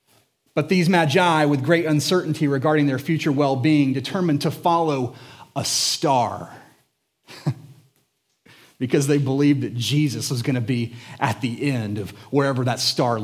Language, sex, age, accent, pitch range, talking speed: English, male, 30-49, American, 130-180 Hz, 140 wpm